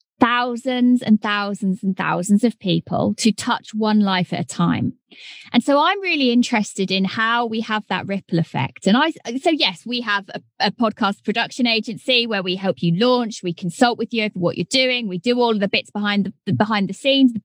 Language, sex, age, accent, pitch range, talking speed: English, female, 20-39, British, 200-265 Hz, 210 wpm